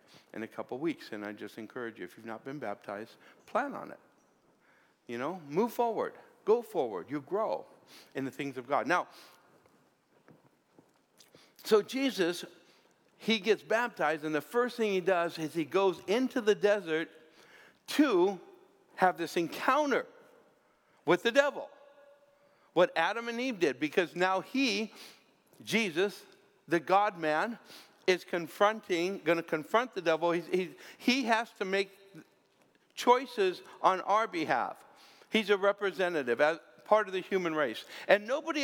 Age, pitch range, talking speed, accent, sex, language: 60-79, 170-235 Hz, 145 wpm, American, male, English